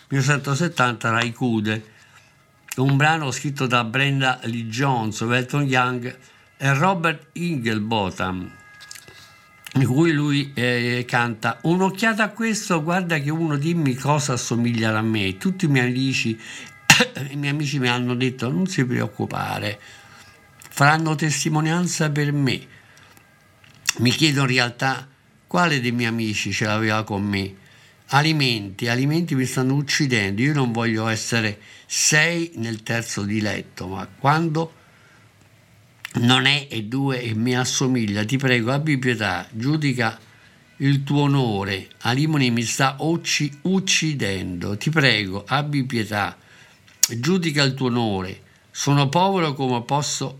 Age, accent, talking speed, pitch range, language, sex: 50-69, native, 125 wpm, 115-145 Hz, Italian, male